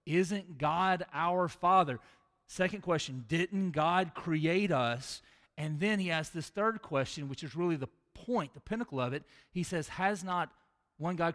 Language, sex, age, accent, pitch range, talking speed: English, male, 40-59, American, 155-210 Hz, 170 wpm